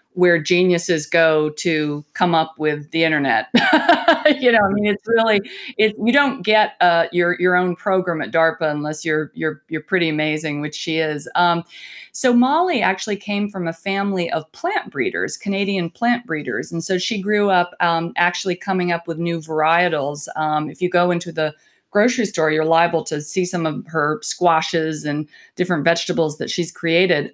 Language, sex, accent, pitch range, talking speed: English, female, American, 165-215 Hz, 180 wpm